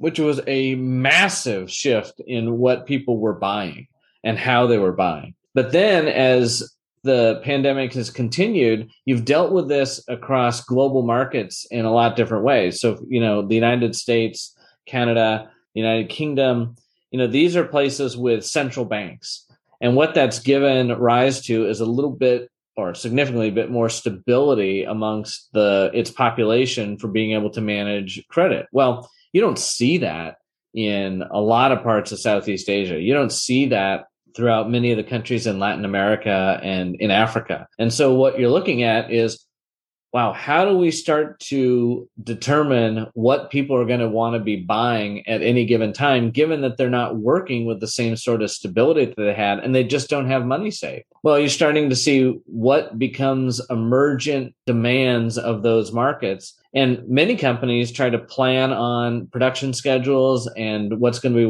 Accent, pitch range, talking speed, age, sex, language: American, 110-130 Hz, 175 wpm, 30-49, male, English